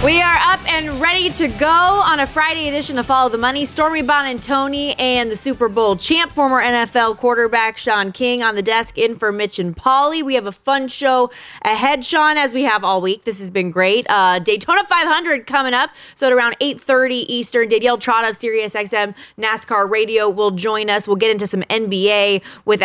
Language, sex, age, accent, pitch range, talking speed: English, female, 20-39, American, 200-265 Hz, 200 wpm